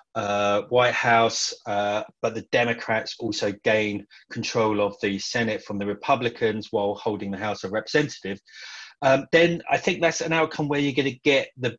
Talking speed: 180 wpm